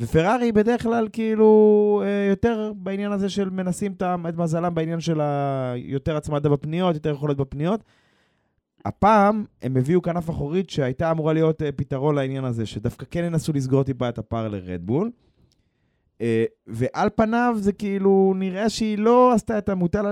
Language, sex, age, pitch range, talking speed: Hebrew, male, 20-39, 130-185 Hz, 145 wpm